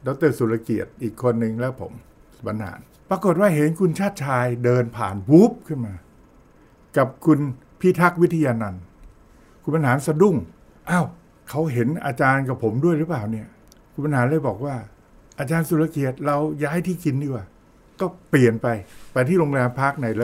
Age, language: 60-79, Thai